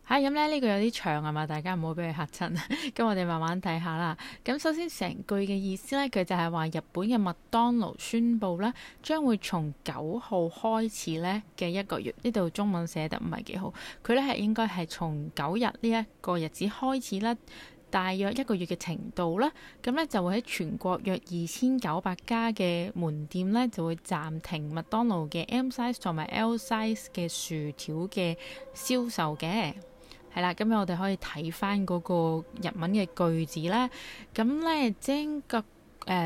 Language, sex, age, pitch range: Chinese, female, 20-39, 170-230 Hz